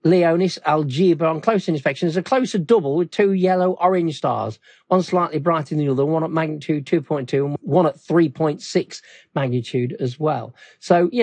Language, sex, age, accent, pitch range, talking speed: English, male, 50-69, British, 135-185 Hz, 170 wpm